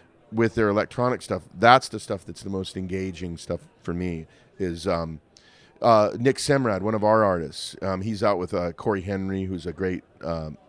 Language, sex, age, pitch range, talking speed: English, male, 40-59, 95-125 Hz, 190 wpm